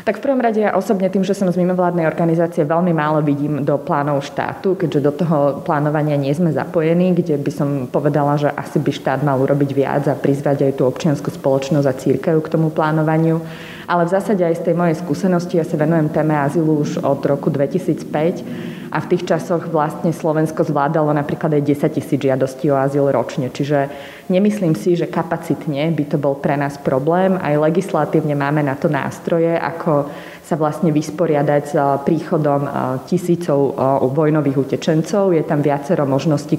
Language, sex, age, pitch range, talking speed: Slovak, female, 20-39, 140-165 Hz, 180 wpm